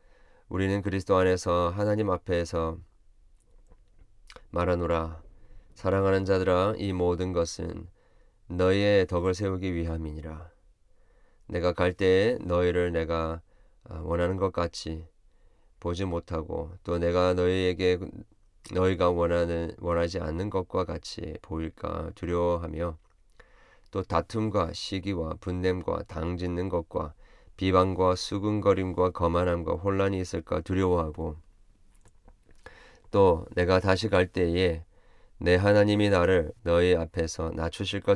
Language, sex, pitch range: Korean, male, 85-95 Hz